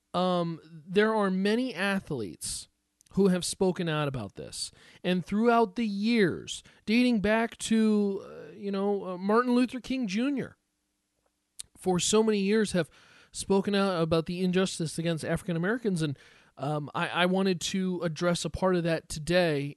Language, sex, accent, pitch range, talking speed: English, male, American, 155-195 Hz, 155 wpm